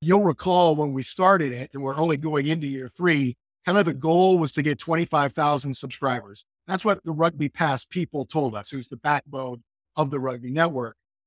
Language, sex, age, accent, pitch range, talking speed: English, male, 50-69, American, 140-175 Hz, 195 wpm